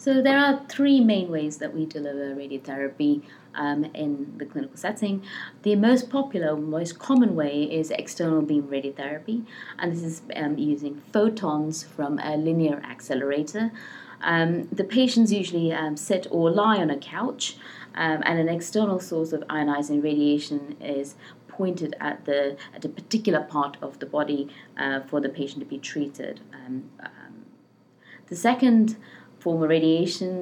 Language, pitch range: English, 150-200 Hz